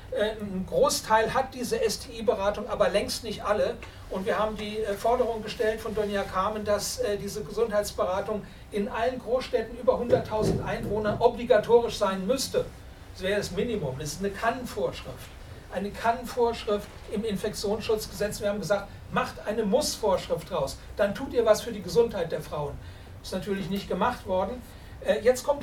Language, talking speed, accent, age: German, 155 wpm, German, 60-79